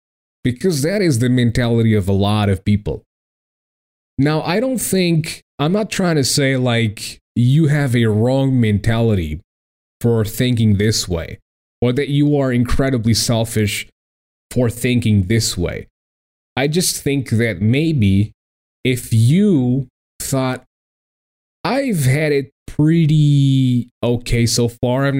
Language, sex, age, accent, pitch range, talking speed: English, male, 20-39, American, 110-150 Hz, 130 wpm